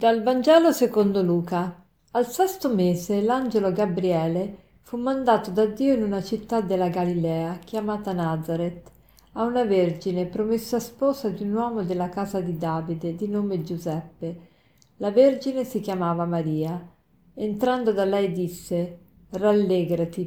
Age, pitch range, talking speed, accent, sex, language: 50-69, 175-215 Hz, 135 wpm, native, female, Italian